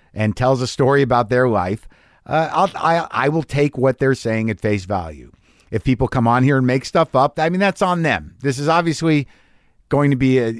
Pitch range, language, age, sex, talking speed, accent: 105-155 Hz, English, 50-69, male, 220 wpm, American